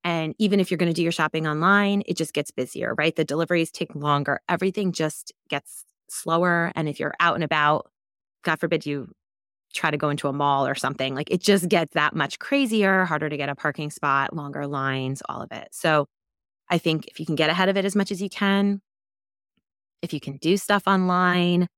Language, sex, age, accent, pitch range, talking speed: English, female, 20-39, American, 140-180 Hz, 220 wpm